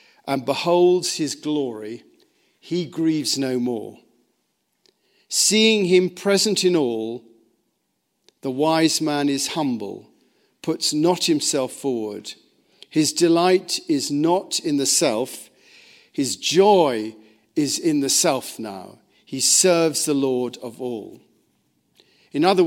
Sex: male